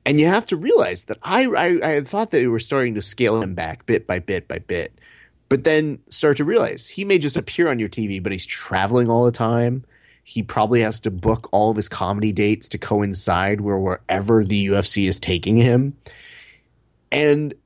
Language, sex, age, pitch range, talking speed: English, male, 30-49, 100-130 Hz, 205 wpm